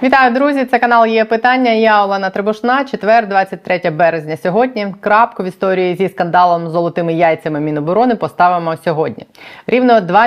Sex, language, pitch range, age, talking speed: female, Ukrainian, 155-195 Hz, 20-39, 145 wpm